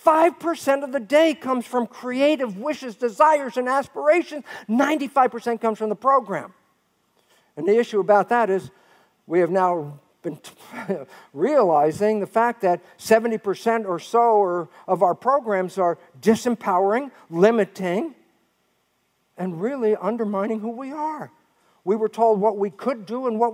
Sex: male